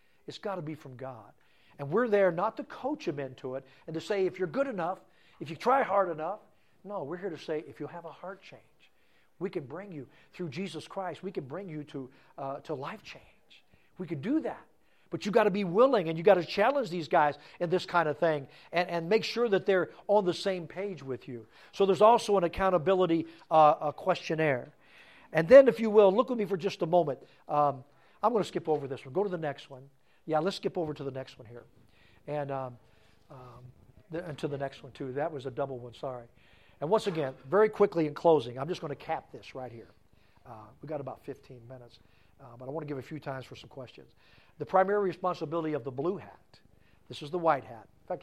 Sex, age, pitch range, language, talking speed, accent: male, 50-69, 130-185 Hz, English, 240 wpm, American